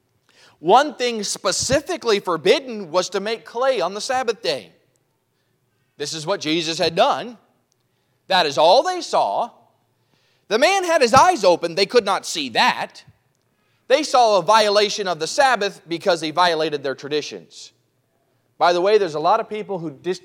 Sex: male